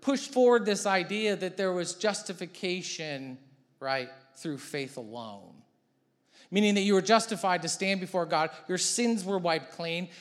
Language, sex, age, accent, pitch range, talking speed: English, male, 40-59, American, 125-180 Hz, 155 wpm